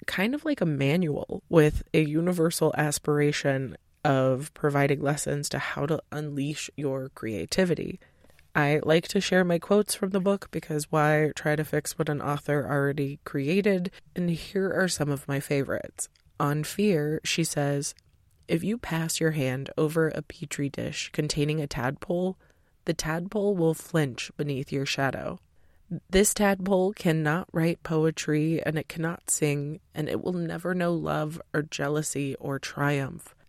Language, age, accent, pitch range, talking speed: English, 20-39, American, 145-175 Hz, 155 wpm